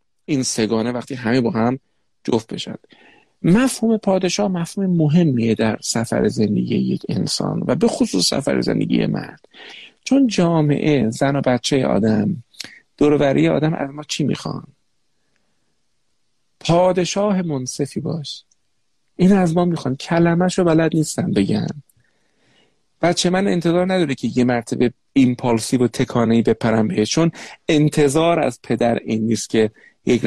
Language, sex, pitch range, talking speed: Persian, male, 125-175 Hz, 140 wpm